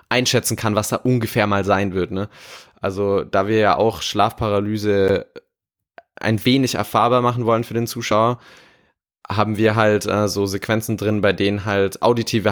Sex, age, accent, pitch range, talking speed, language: male, 20-39, German, 100-115 Hz, 160 wpm, German